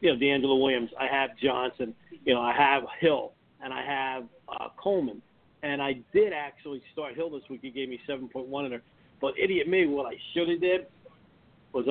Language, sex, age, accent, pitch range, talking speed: English, male, 50-69, American, 135-165 Hz, 200 wpm